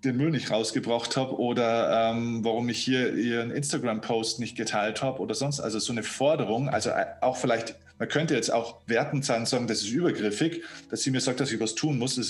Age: 20-39